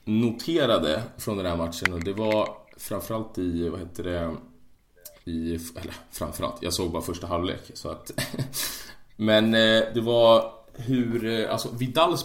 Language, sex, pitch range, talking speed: Swedish, male, 85-110 Hz, 140 wpm